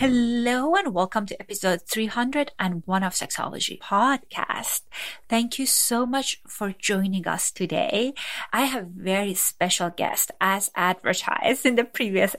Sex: female